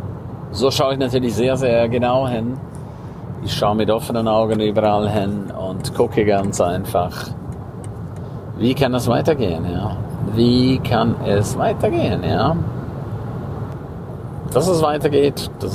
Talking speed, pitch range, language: 125 wpm, 105-130 Hz, German